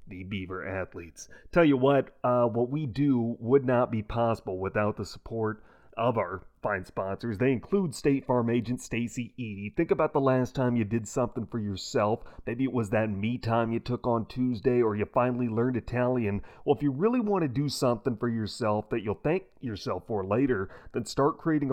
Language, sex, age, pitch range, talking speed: English, male, 30-49, 105-135 Hz, 195 wpm